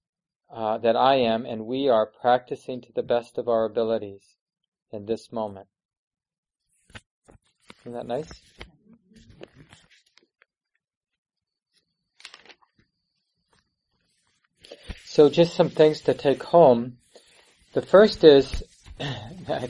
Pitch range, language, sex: 115-140 Hz, English, male